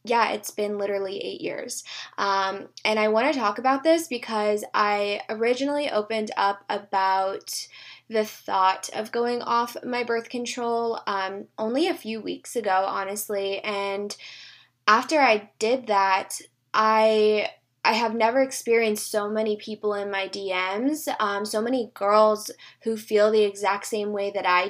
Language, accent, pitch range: English, American, 200-235 Hz